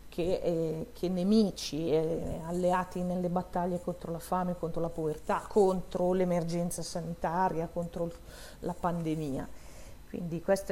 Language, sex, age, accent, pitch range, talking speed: Italian, female, 40-59, native, 170-205 Hz, 130 wpm